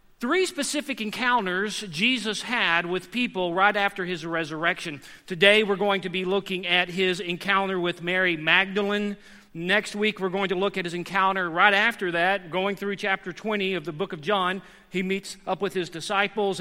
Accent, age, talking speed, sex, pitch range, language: American, 40-59, 180 wpm, male, 185-225 Hz, English